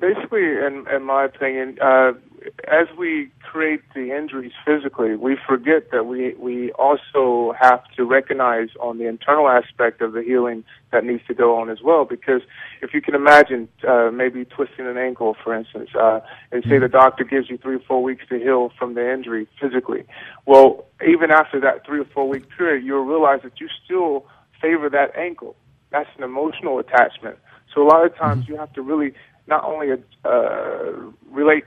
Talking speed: 185 wpm